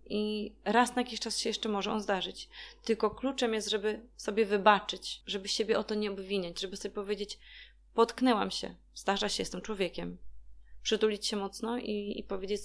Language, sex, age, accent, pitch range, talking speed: Polish, female, 20-39, native, 195-225 Hz, 175 wpm